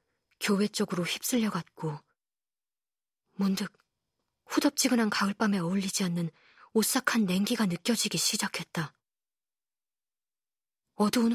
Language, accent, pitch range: Korean, native, 185-230 Hz